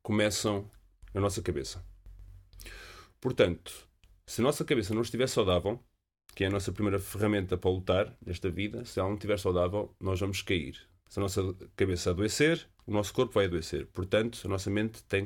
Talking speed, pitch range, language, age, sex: 175 wpm, 90-115 Hz, Portuguese, 30-49, male